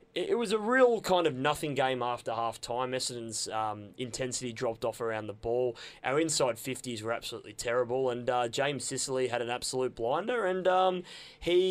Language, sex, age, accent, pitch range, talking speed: English, male, 20-39, Australian, 130-185 Hz, 180 wpm